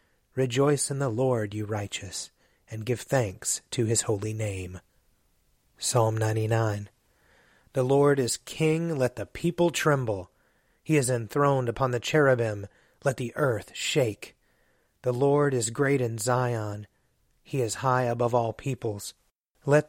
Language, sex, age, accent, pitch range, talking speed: English, male, 30-49, American, 110-140 Hz, 140 wpm